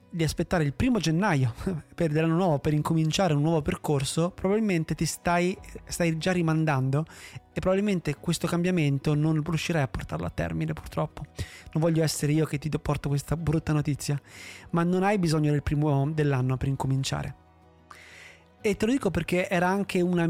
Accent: native